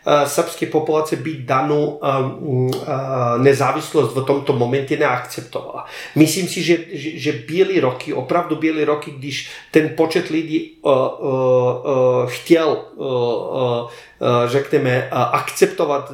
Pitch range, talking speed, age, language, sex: 140-165 Hz, 115 wpm, 40-59, Czech, male